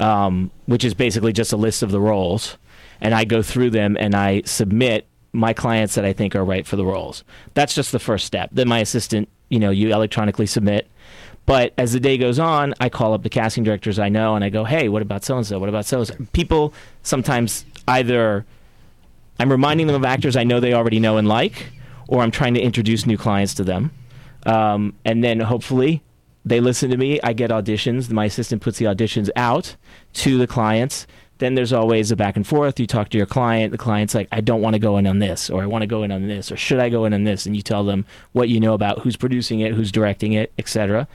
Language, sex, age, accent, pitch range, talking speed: English, male, 30-49, American, 105-125 Hz, 235 wpm